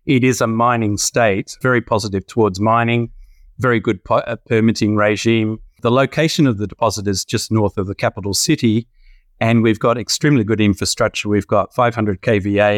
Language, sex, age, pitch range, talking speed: English, male, 30-49, 105-120 Hz, 170 wpm